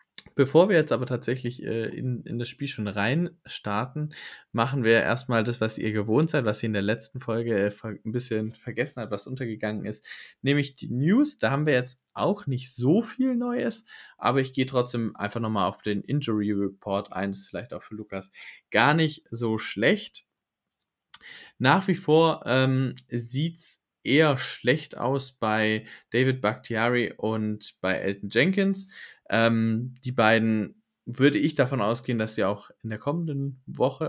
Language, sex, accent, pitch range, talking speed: German, male, German, 105-135 Hz, 170 wpm